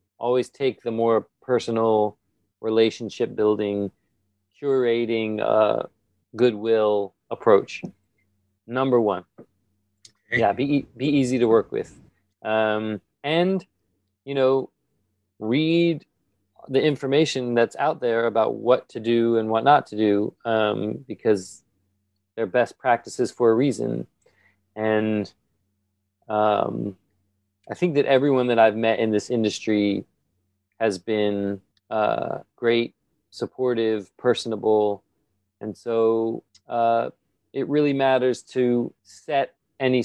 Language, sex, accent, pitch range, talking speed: English, male, American, 100-120 Hz, 110 wpm